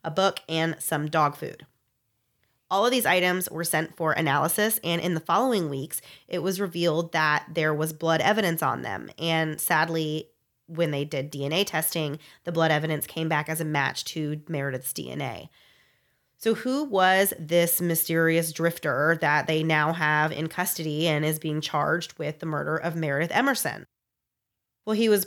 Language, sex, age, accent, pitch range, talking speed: English, female, 30-49, American, 155-180 Hz, 170 wpm